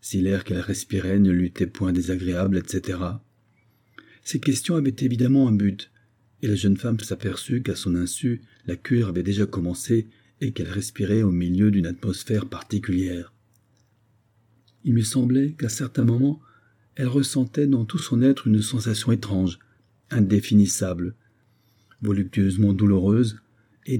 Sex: male